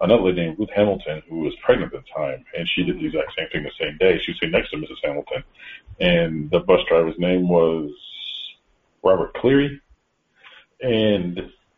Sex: male